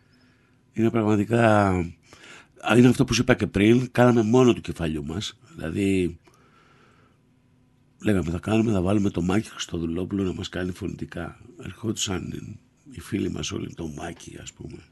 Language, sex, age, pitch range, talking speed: Greek, male, 60-79, 90-125 Hz, 150 wpm